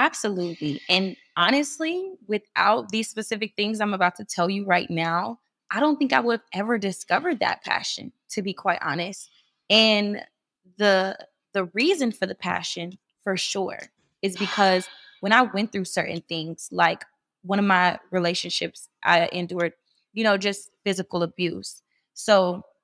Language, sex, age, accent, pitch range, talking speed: English, female, 20-39, American, 175-230 Hz, 150 wpm